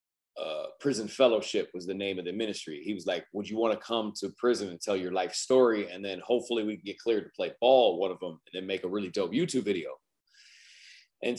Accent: American